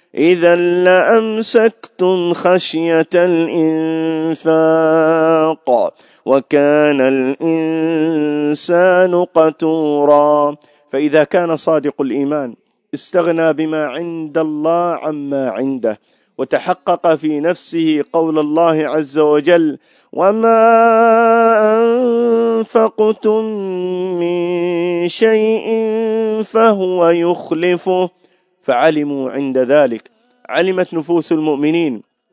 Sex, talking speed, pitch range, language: male, 65 wpm, 145-180 Hz, Arabic